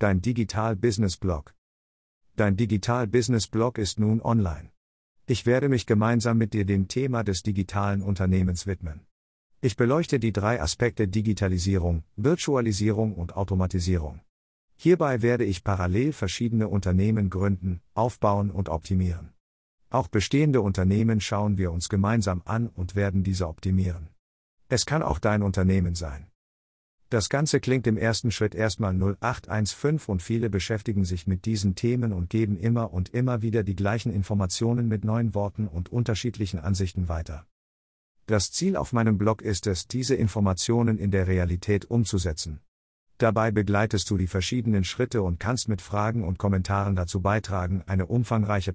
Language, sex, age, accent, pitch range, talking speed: German, male, 50-69, German, 95-115 Hz, 150 wpm